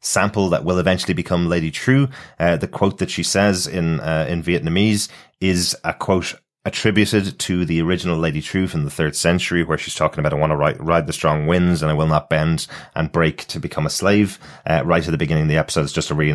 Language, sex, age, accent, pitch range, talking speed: English, male, 30-49, British, 75-90 Hz, 240 wpm